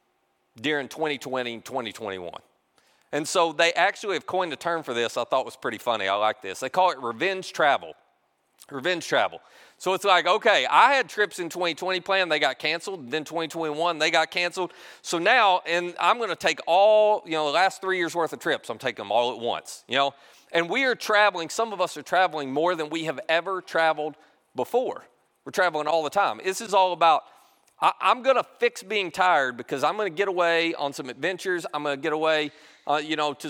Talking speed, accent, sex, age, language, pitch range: 220 wpm, American, male, 40-59, English, 150-185 Hz